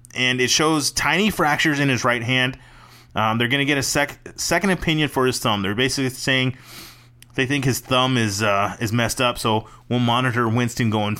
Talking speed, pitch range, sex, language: 200 wpm, 120-150 Hz, male, English